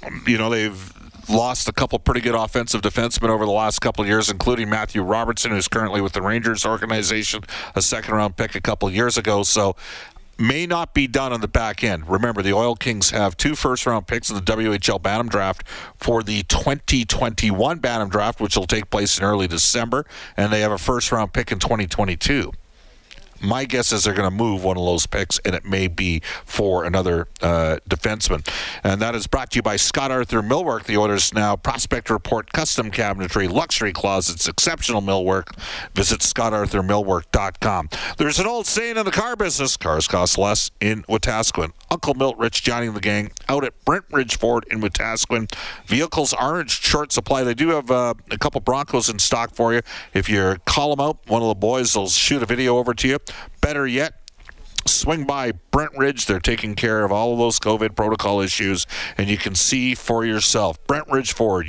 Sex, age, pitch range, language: male, 50-69, 100-125 Hz, English